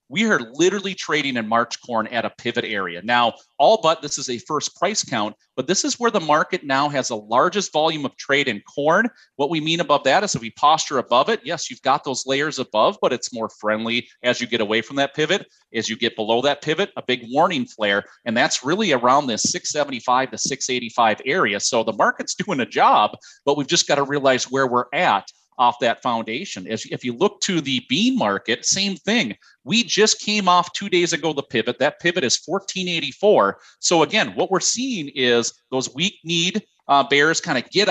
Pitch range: 135-185 Hz